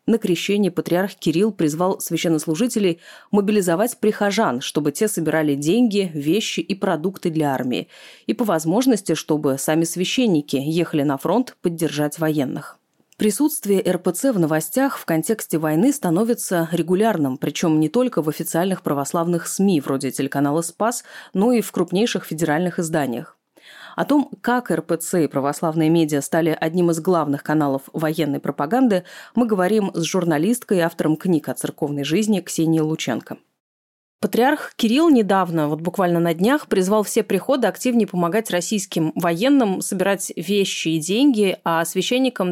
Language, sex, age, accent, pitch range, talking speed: Russian, female, 30-49, native, 160-215 Hz, 140 wpm